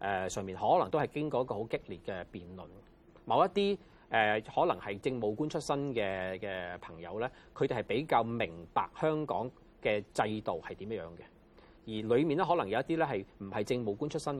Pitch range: 100-150 Hz